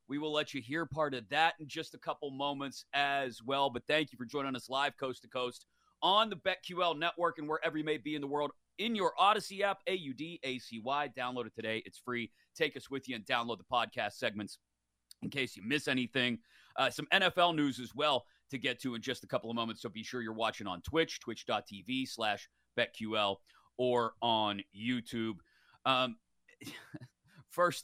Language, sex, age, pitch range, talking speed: English, male, 30-49, 115-155 Hz, 195 wpm